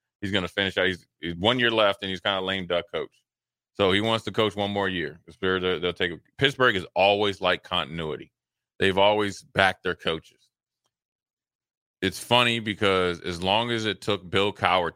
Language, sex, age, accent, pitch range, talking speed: English, male, 30-49, American, 90-100 Hz, 195 wpm